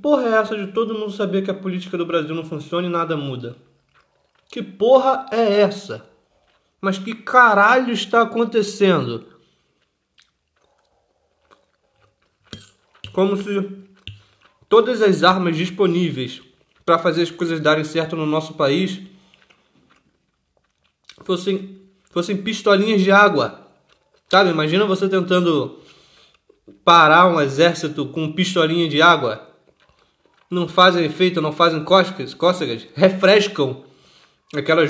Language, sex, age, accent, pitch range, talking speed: Portuguese, male, 20-39, Brazilian, 150-195 Hz, 115 wpm